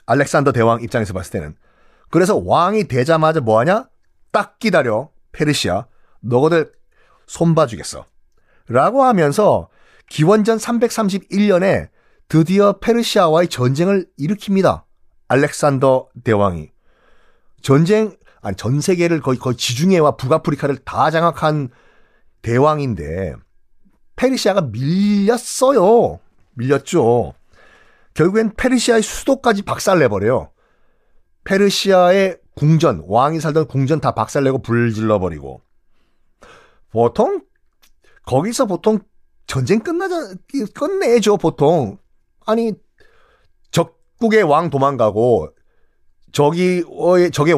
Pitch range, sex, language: 130-205 Hz, male, Korean